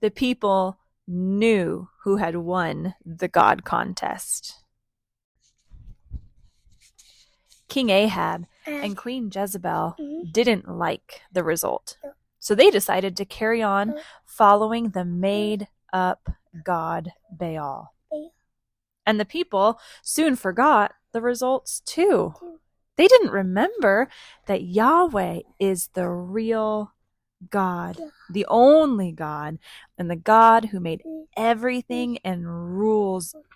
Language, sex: English, female